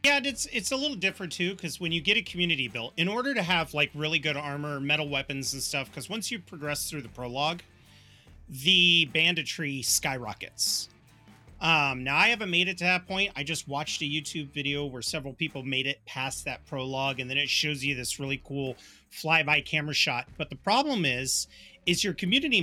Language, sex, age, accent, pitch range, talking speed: English, male, 30-49, American, 135-185 Hz, 205 wpm